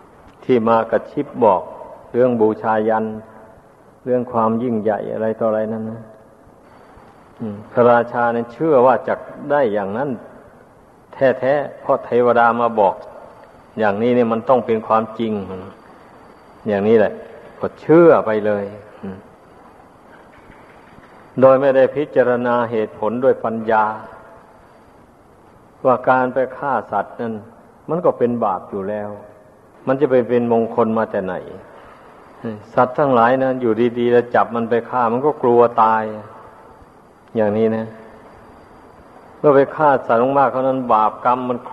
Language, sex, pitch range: Thai, male, 110-125 Hz